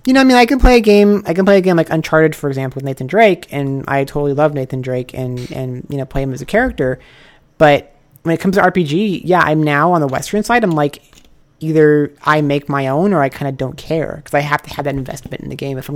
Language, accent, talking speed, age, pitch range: English, American, 280 wpm, 30-49, 135-175 Hz